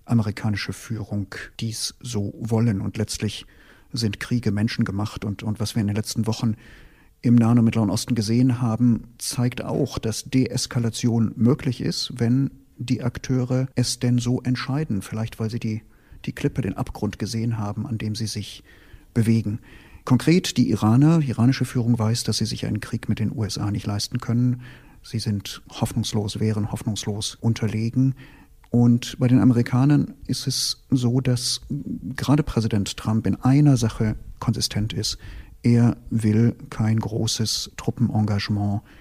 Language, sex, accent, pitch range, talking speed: German, male, German, 105-125 Hz, 150 wpm